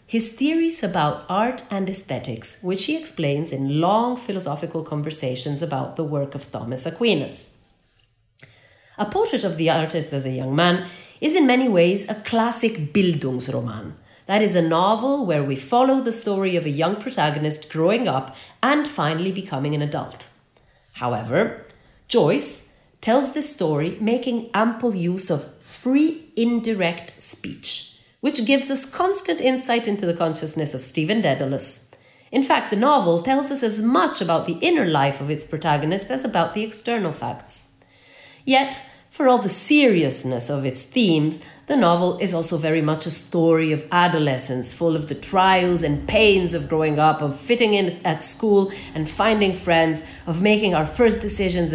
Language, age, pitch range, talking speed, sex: Italian, 40-59, 145-225 Hz, 160 wpm, female